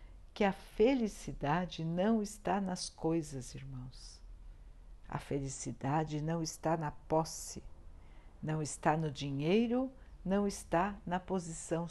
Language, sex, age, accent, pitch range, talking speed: Portuguese, female, 60-79, Brazilian, 140-195 Hz, 110 wpm